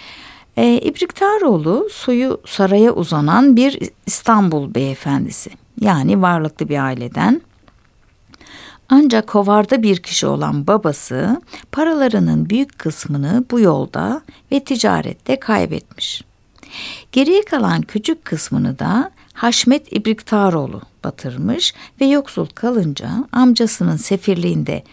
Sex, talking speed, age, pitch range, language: female, 95 wpm, 60-79, 170-255 Hz, Turkish